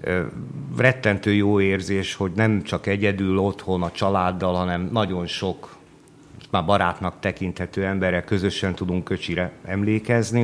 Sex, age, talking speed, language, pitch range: male, 50-69, 120 wpm, Hungarian, 90-110 Hz